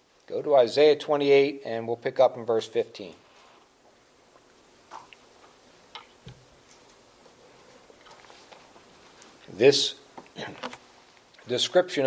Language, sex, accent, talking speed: English, male, American, 65 wpm